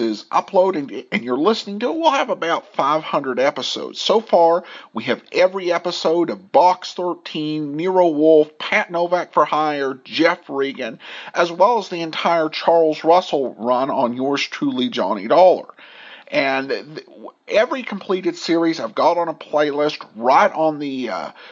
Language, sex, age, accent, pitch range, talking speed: English, male, 50-69, American, 150-220 Hz, 155 wpm